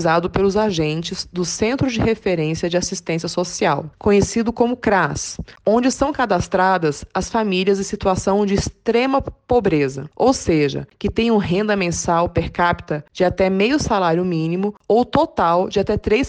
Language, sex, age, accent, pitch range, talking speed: Portuguese, female, 20-39, Brazilian, 170-215 Hz, 150 wpm